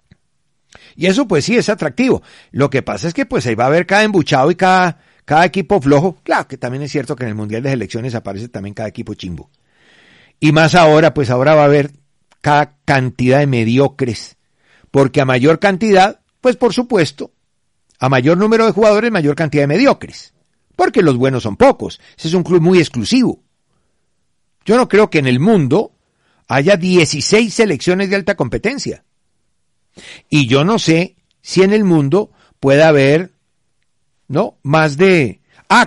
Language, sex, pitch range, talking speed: Spanish, male, 135-195 Hz, 175 wpm